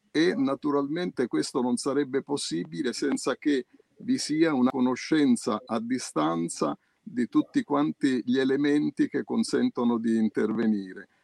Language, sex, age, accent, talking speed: Italian, male, 50-69, native, 125 wpm